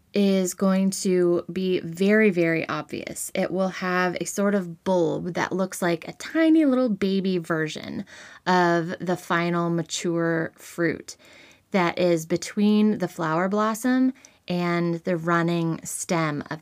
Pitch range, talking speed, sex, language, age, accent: 165-190 Hz, 135 wpm, female, English, 20-39, American